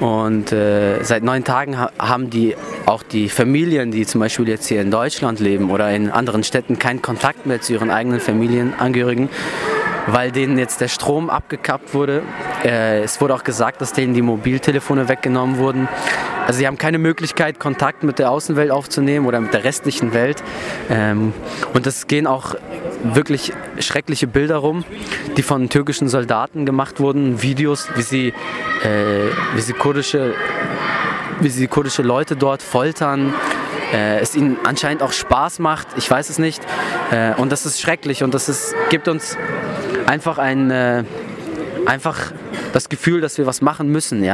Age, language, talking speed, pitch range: 20-39, German, 160 wpm, 125-155 Hz